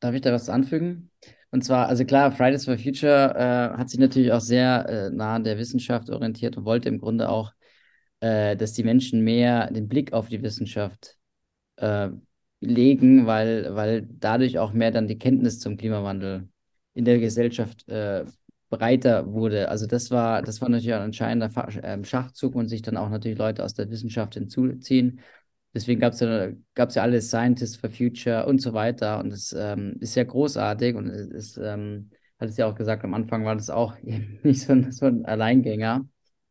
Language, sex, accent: German, male, German